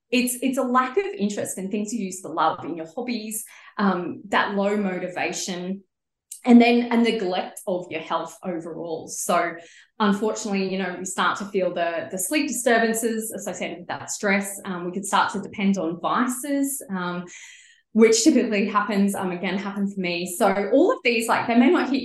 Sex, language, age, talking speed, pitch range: female, English, 20-39, 185 wpm, 175-235 Hz